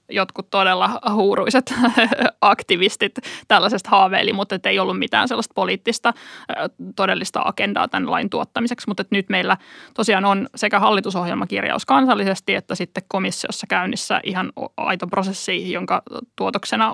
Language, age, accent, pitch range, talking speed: Finnish, 20-39, native, 190-235 Hz, 125 wpm